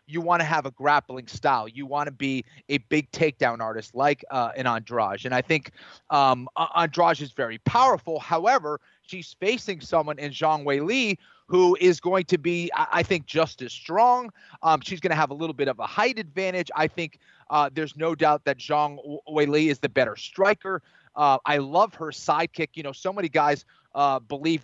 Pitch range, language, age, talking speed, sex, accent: 140-175 Hz, English, 30-49, 195 wpm, male, American